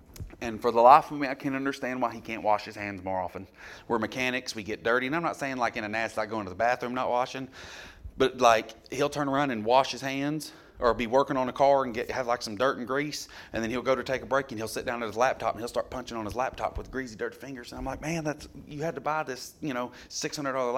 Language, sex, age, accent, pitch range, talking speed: English, male, 30-49, American, 105-135 Hz, 290 wpm